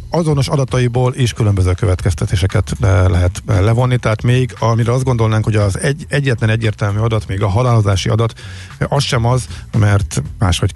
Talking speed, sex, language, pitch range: 155 wpm, male, Hungarian, 95-115 Hz